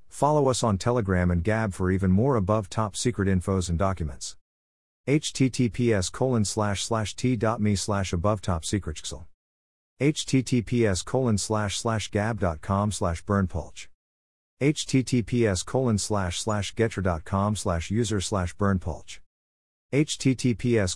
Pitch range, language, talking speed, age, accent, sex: 85-115 Hz, English, 105 wpm, 50-69, American, male